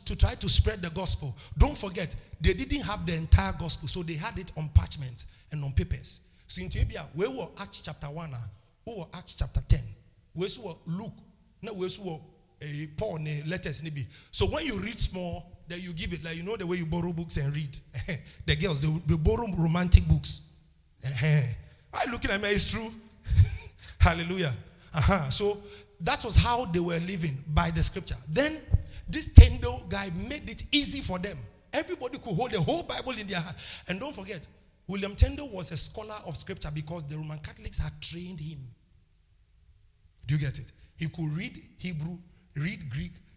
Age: 50-69